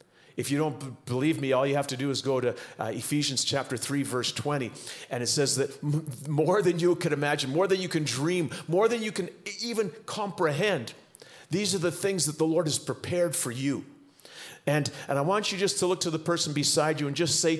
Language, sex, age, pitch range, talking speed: English, male, 40-59, 140-180 Hz, 235 wpm